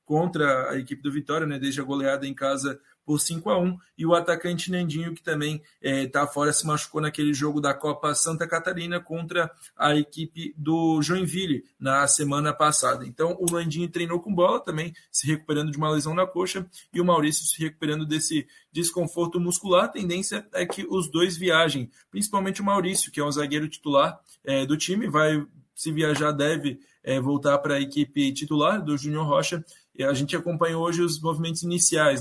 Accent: Brazilian